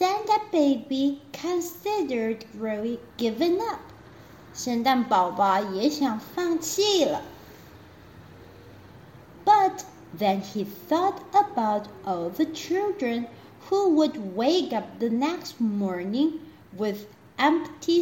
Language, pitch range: Chinese, 225-340 Hz